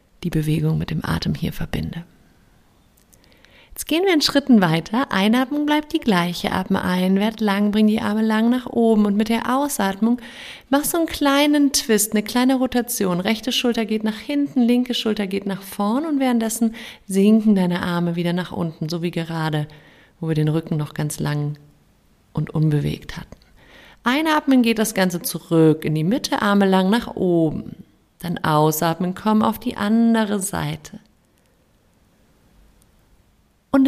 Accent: German